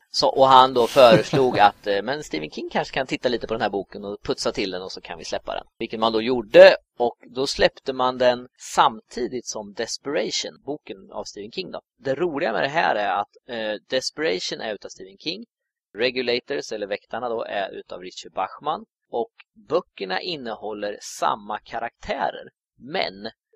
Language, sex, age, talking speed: Swedish, male, 30-49, 175 wpm